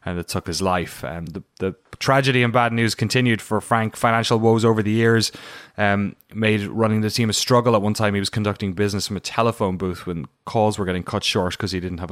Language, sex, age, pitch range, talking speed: English, male, 20-39, 95-120 Hz, 240 wpm